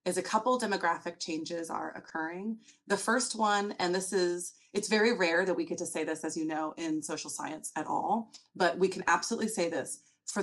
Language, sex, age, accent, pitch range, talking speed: English, female, 30-49, American, 170-205 Hz, 215 wpm